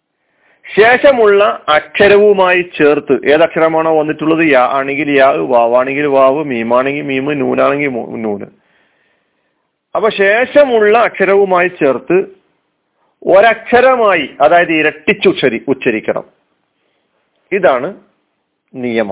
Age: 40-59